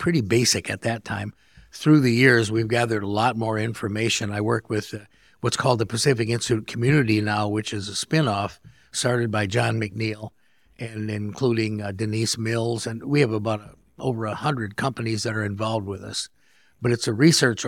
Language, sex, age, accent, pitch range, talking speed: English, male, 50-69, American, 105-120 Hz, 185 wpm